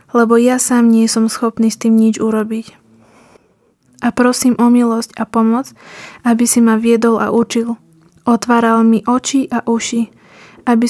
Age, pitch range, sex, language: 20-39, 225-245 Hz, female, Slovak